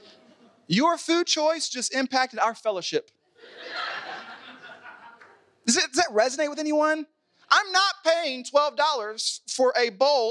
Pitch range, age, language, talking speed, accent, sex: 230-350 Hz, 30-49, English, 120 wpm, American, male